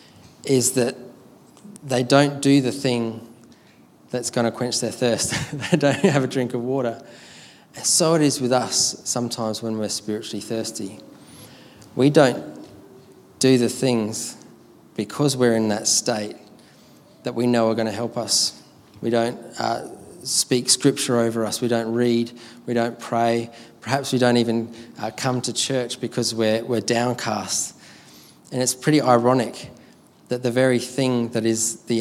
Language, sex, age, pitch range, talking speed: English, male, 20-39, 115-130 Hz, 160 wpm